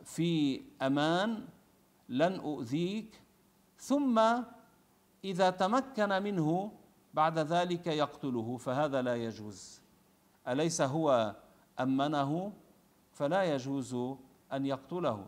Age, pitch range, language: 50-69, 130-180 Hz, Arabic